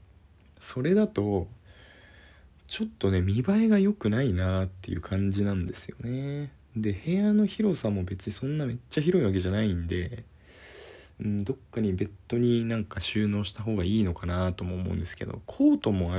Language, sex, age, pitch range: Japanese, male, 20-39, 90-120 Hz